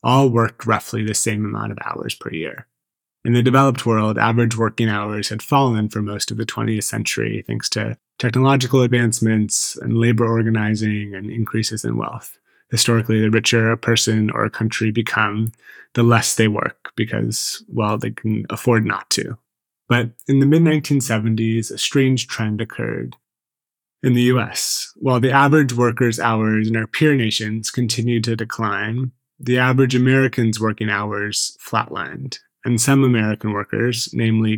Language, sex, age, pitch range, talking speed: English, male, 20-39, 110-125 Hz, 155 wpm